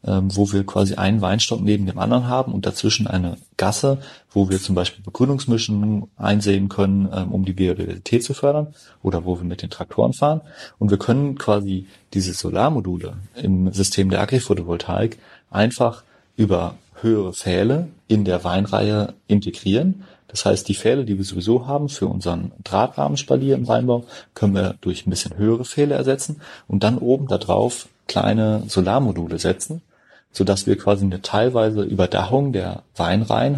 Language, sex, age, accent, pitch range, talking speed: German, male, 30-49, German, 95-120 Hz, 155 wpm